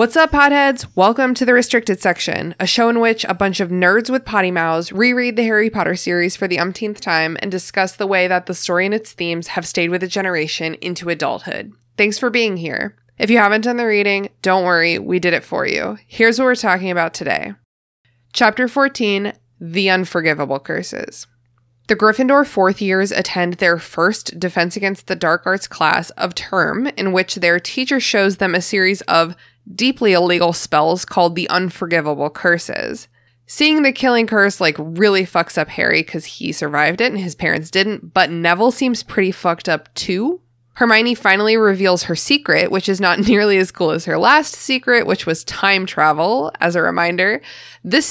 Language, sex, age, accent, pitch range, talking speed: English, female, 20-39, American, 170-220 Hz, 190 wpm